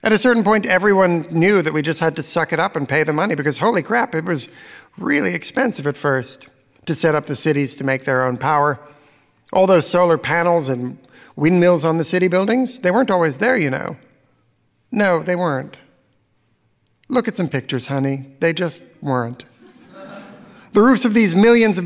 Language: English